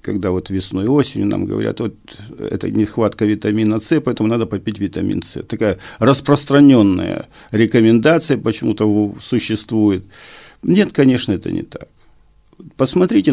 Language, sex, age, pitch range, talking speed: Russian, male, 50-69, 105-155 Hz, 120 wpm